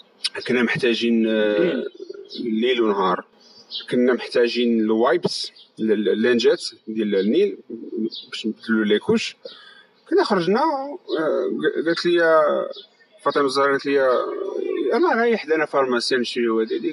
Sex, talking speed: male, 100 wpm